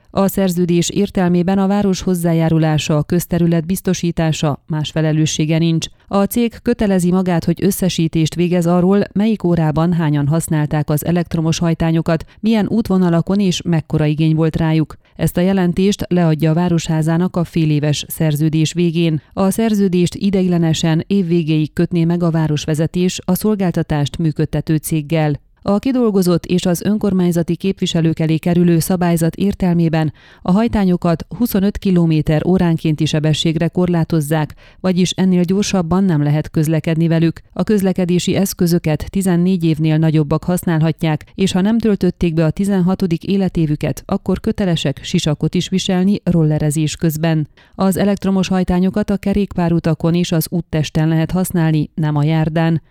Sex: female